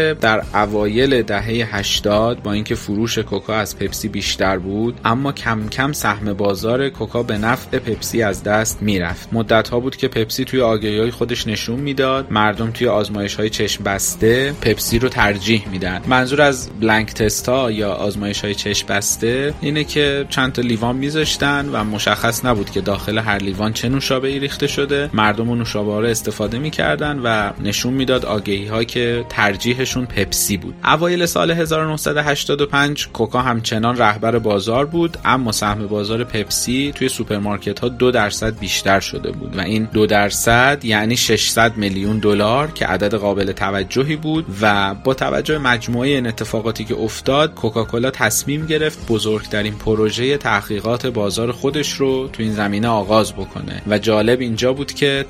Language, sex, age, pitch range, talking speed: Persian, male, 30-49, 105-130 Hz, 155 wpm